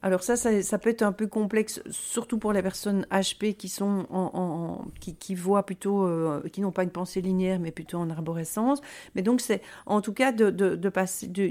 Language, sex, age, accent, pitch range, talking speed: French, female, 50-69, French, 185-220 Hz, 230 wpm